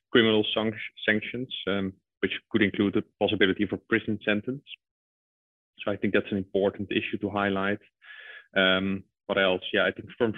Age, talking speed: 20-39, 155 wpm